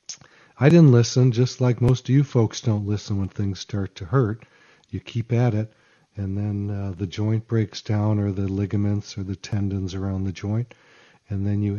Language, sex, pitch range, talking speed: English, male, 100-120 Hz, 200 wpm